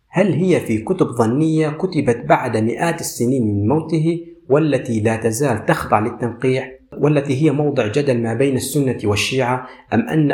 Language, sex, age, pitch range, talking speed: Arabic, male, 40-59, 110-155 Hz, 150 wpm